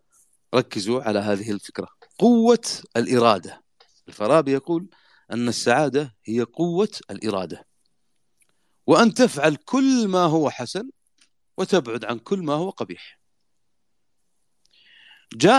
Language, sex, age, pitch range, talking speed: Arabic, male, 40-59, 110-170 Hz, 100 wpm